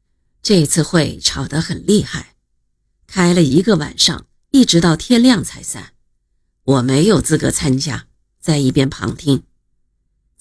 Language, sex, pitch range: Chinese, female, 145-190 Hz